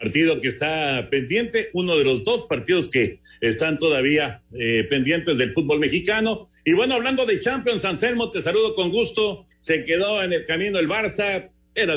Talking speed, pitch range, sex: 175 wpm, 135-190 Hz, male